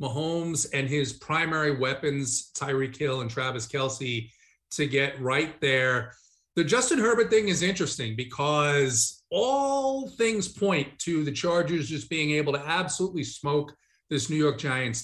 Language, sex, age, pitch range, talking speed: English, male, 30-49, 145-195 Hz, 150 wpm